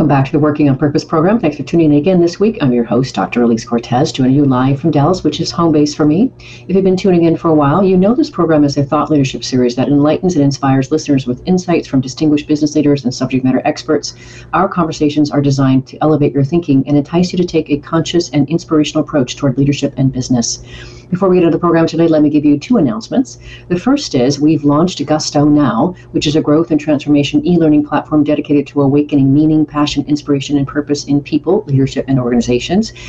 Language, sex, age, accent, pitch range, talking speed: English, female, 40-59, American, 135-160 Hz, 230 wpm